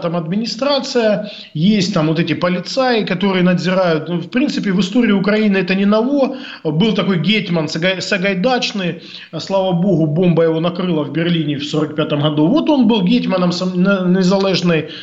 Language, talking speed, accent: Russian, 145 wpm, native